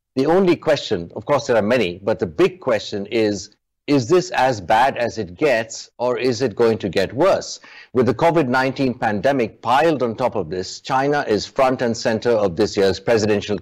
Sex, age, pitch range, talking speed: male, 60-79, 95-125 Hz, 200 wpm